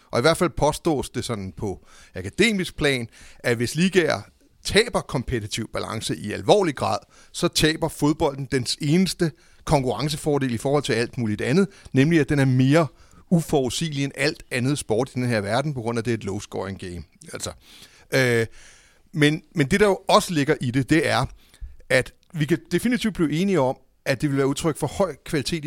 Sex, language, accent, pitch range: male, Danish, native, 115-155 Hz